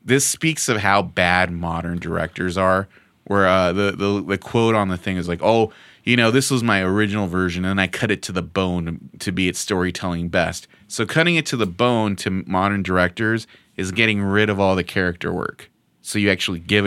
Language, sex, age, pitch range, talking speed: English, male, 30-49, 90-105 Hz, 215 wpm